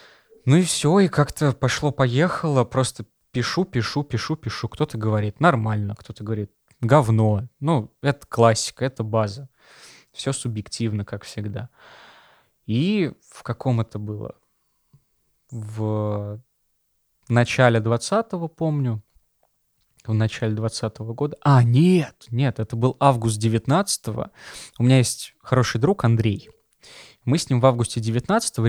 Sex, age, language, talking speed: male, 20-39, Russian, 115 wpm